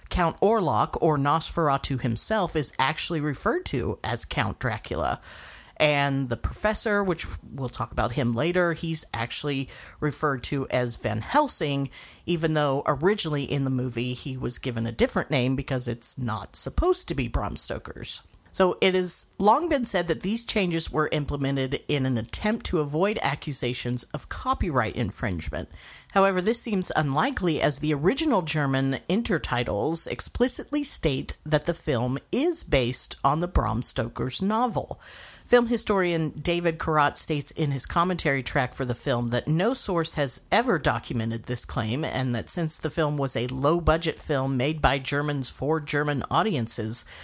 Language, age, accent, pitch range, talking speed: English, 40-59, American, 130-180 Hz, 160 wpm